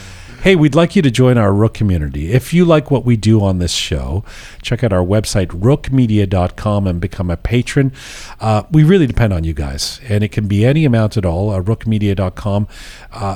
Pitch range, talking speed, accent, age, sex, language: 95-130 Hz, 200 wpm, American, 40-59, male, English